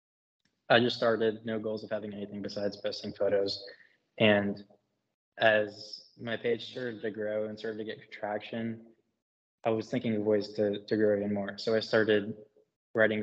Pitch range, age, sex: 105-110 Hz, 20-39, male